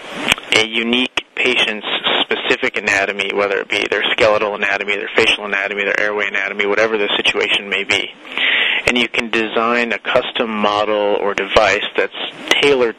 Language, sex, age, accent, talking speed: English, male, 30-49, American, 155 wpm